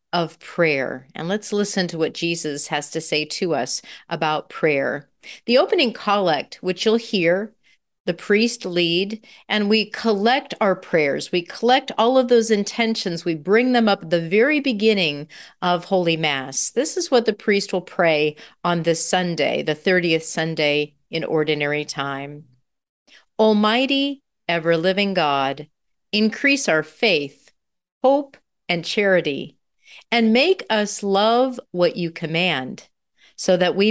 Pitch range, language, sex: 155-215 Hz, English, female